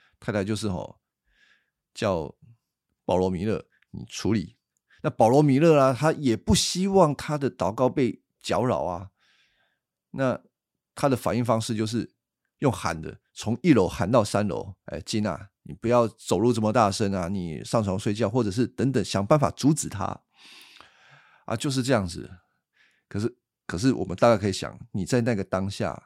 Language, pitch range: Chinese, 95-130 Hz